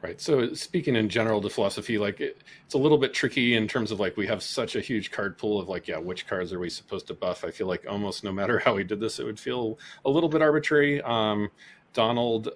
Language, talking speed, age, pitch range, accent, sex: English, 260 wpm, 40-59, 95-120 Hz, American, male